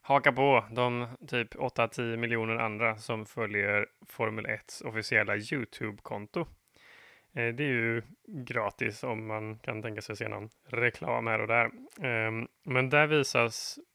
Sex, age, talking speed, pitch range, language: male, 20-39, 140 wpm, 110-125 Hz, Swedish